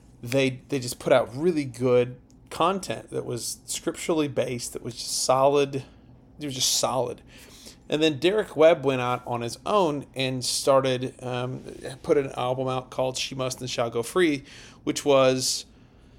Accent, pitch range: American, 125-145 Hz